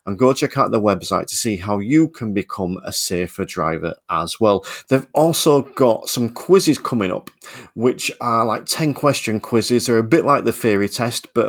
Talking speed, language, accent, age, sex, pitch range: 195 wpm, English, British, 40-59, male, 100-125 Hz